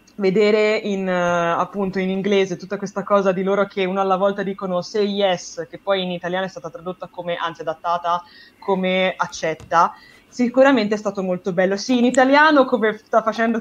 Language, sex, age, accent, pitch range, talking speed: Italian, female, 20-39, native, 170-215 Hz, 175 wpm